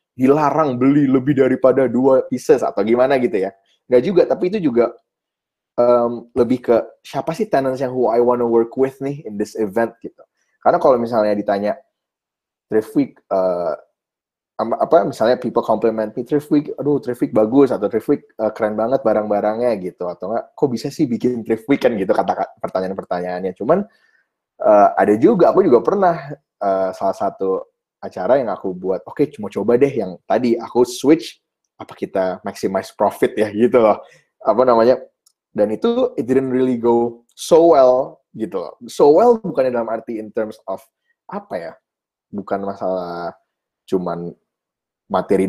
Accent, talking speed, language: Indonesian, 160 wpm, English